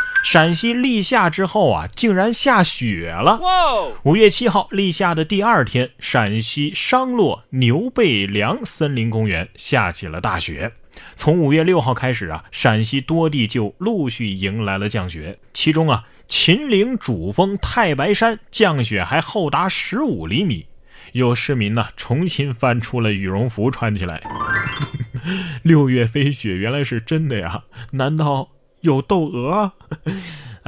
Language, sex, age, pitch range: Chinese, male, 30-49, 110-175 Hz